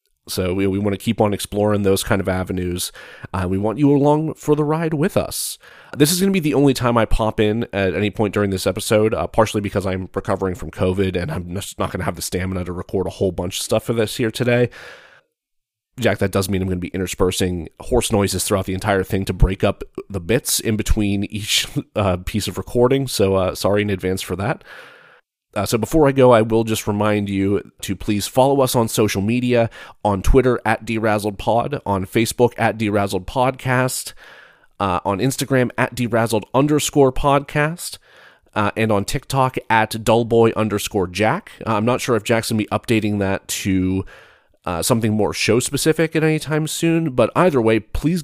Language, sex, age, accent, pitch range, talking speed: English, male, 30-49, American, 95-120 Hz, 205 wpm